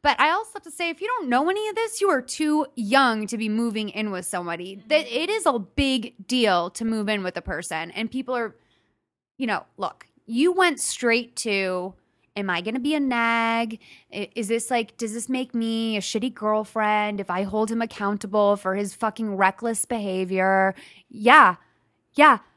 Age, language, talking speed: 20-39, English, 195 wpm